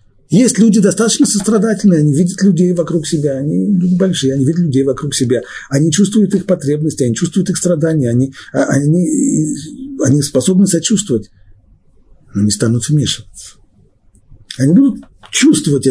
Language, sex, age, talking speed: Russian, male, 50-69, 145 wpm